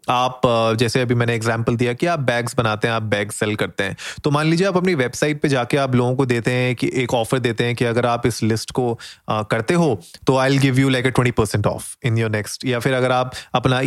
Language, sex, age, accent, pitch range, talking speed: Hindi, male, 30-49, native, 115-150 Hz, 270 wpm